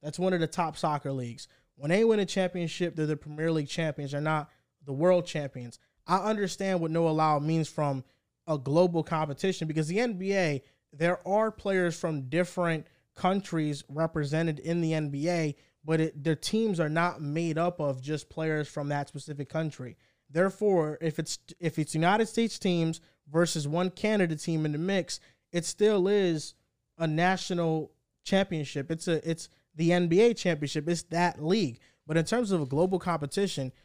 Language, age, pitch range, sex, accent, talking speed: English, 20-39, 150-180 Hz, male, American, 170 wpm